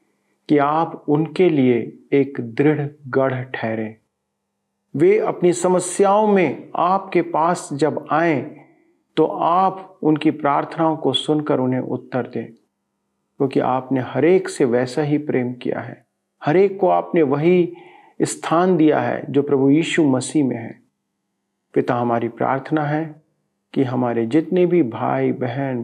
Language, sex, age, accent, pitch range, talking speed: Hindi, male, 40-59, native, 125-170 Hz, 130 wpm